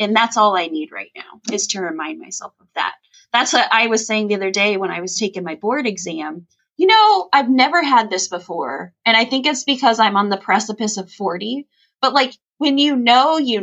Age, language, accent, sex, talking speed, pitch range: 20-39, English, American, female, 230 wpm, 185-260 Hz